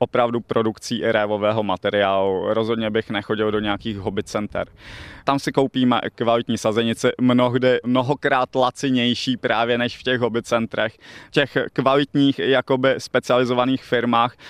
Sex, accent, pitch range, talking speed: male, native, 110-125 Hz, 120 wpm